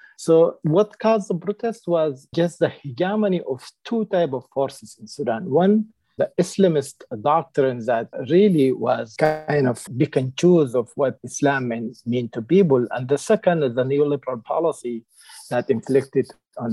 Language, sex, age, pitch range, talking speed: English, male, 50-69, 120-165 Hz, 160 wpm